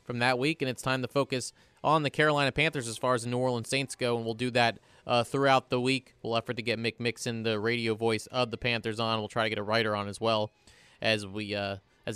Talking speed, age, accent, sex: 265 wpm, 20-39, American, male